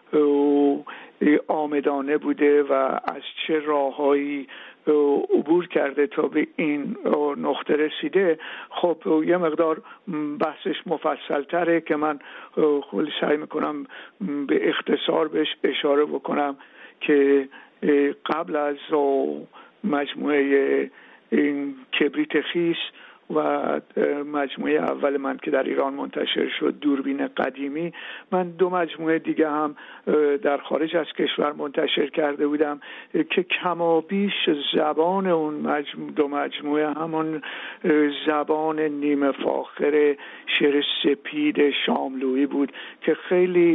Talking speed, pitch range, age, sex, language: 105 wpm, 145-165 Hz, 60-79, male, Persian